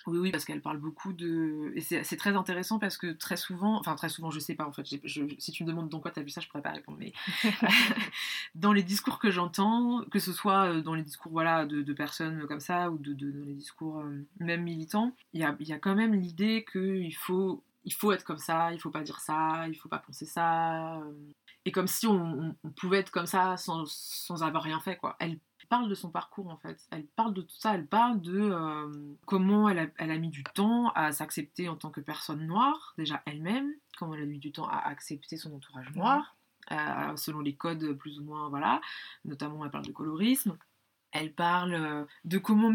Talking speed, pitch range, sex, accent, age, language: 235 wpm, 155-195 Hz, female, French, 20-39, French